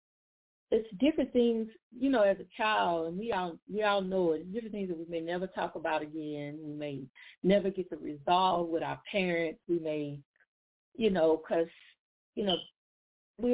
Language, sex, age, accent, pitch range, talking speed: English, female, 40-59, American, 175-225 Hz, 185 wpm